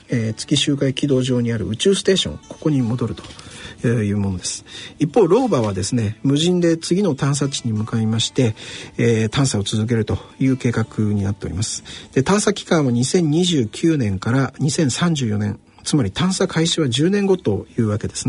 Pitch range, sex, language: 110-160 Hz, male, Japanese